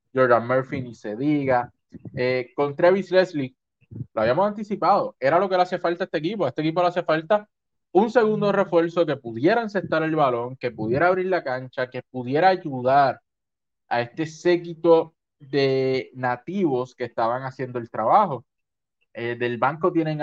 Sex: male